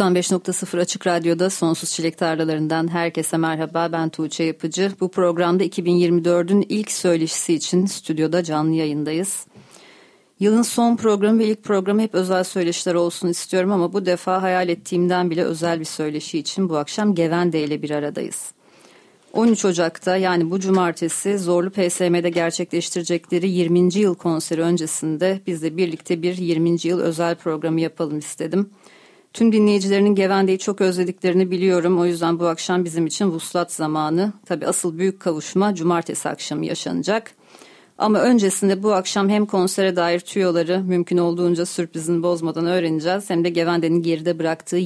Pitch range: 165-190 Hz